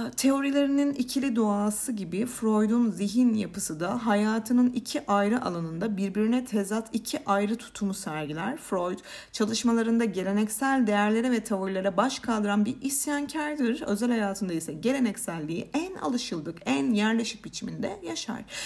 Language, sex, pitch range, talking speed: Turkish, female, 180-235 Hz, 120 wpm